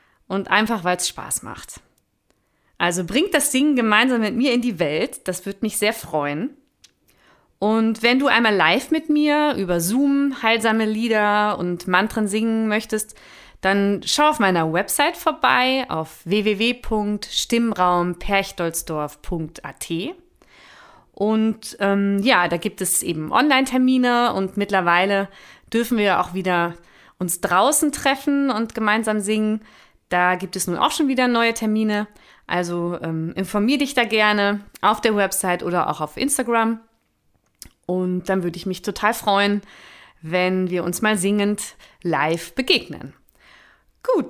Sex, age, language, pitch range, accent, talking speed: female, 30-49, German, 185-245 Hz, German, 135 wpm